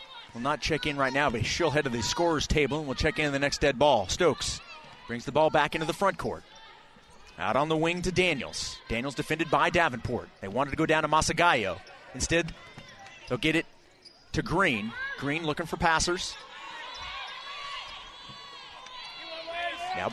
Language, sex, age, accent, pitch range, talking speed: English, male, 30-49, American, 150-215 Hz, 175 wpm